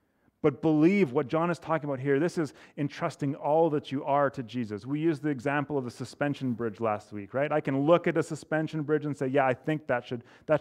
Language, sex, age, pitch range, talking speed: English, male, 30-49, 115-150 Hz, 240 wpm